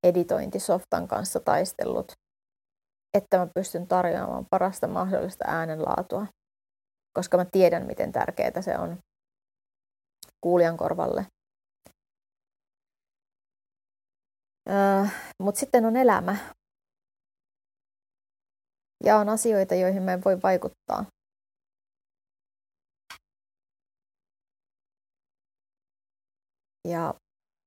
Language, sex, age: Finnish, female, 30-49